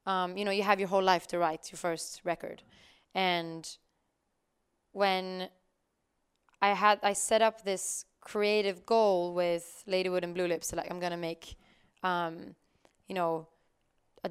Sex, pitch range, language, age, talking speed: female, 180-205 Hz, English, 20-39, 155 wpm